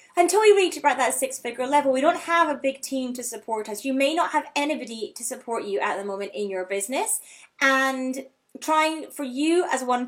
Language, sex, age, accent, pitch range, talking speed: English, female, 30-49, British, 215-290 Hz, 220 wpm